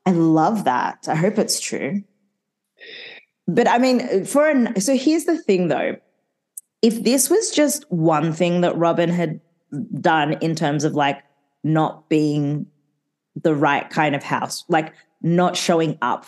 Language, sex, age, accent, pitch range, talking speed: English, female, 20-39, Australian, 160-200 Hz, 150 wpm